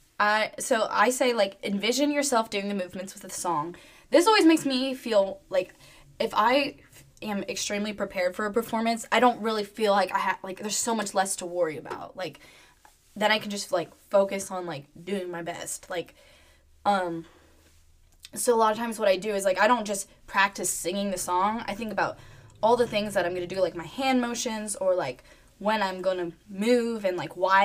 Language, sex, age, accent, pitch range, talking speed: English, female, 10-29, American, 185-220 Hz, 215 wpm